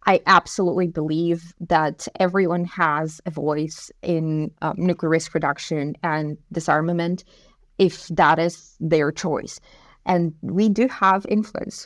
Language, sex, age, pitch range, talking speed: English, female, 30-49, 170-210 Hz, 125 wpm